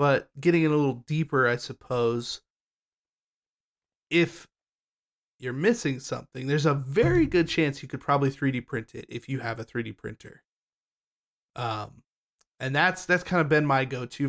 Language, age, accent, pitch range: English, 20-39, American, 120-145 Hz